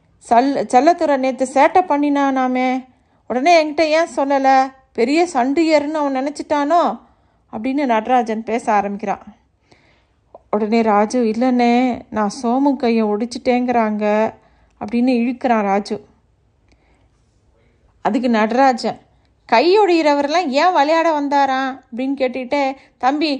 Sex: female